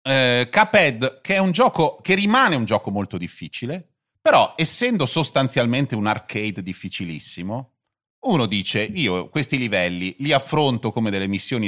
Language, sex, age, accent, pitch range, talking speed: Italian, male, 30-49, native, 100-140 Hz, 140 wpm